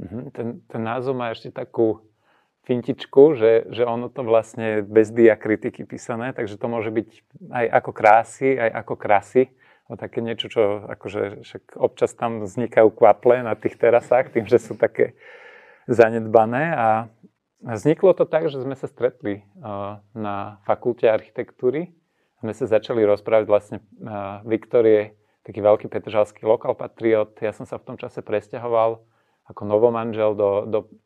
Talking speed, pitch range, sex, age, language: 150 wpm, 105-120 Hz, male, 40-59, Slovak